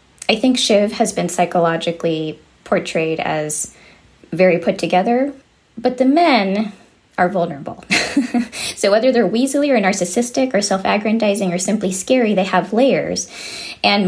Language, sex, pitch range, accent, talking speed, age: English, female, 175-245 Hz, American, 130 wpm, 20-39